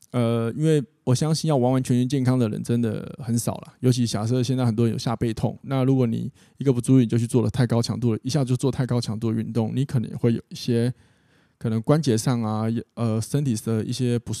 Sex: male